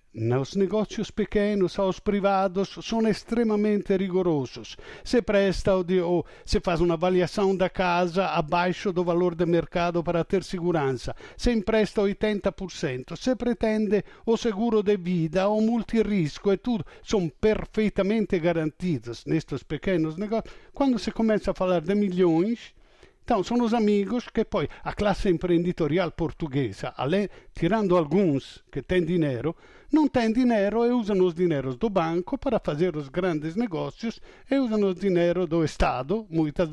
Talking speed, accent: 145 wpm, Italian